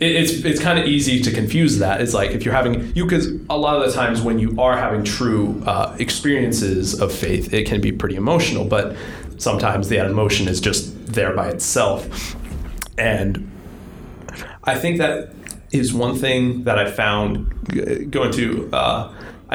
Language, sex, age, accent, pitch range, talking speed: English, male, 20-39, American, 100-140 Hz, 170 wpm